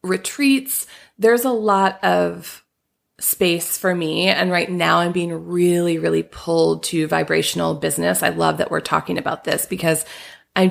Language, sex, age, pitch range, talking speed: English, female, 20-39, 160-180 Hz, 155 wpm